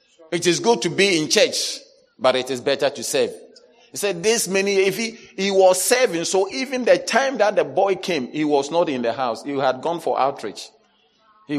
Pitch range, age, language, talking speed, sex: 160-220 Hz, 40-59, English, 215 wpm, male